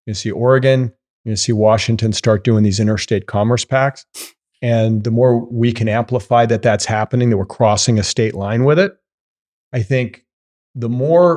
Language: English